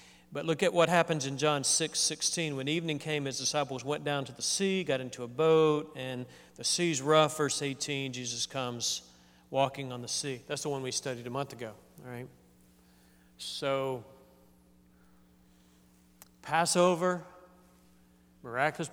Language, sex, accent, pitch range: English, male, American, 120-155 Hz